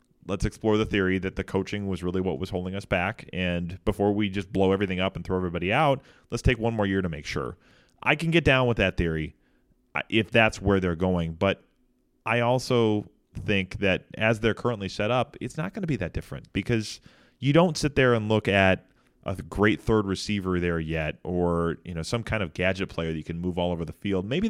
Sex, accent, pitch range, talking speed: male, American, 90-110 Hz, 230 wpm